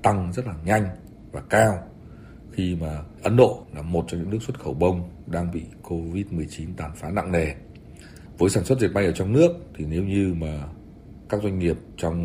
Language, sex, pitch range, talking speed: Vietnamese, male, 75-95 Hz, 205 wpm